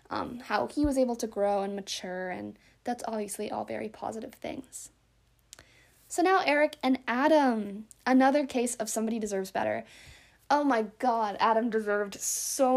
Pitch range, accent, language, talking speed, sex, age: 215-260 Hz, American, English, 155 wpm, female, 20-39